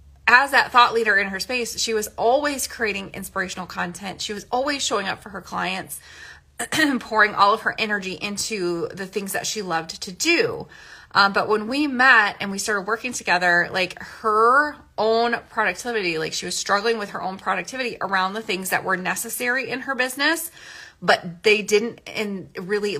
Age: 30-49